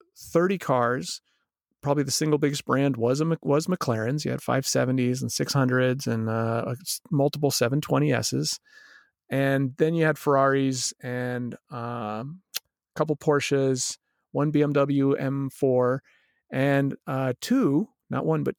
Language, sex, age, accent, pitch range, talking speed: English, male, 40-59, American, 125-145 Hz, 125 wpm